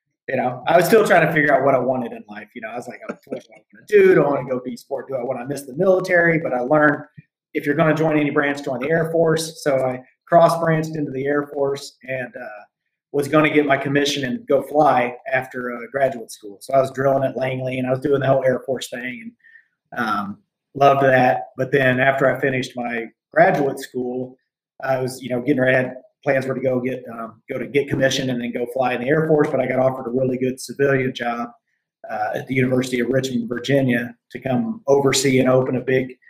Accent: American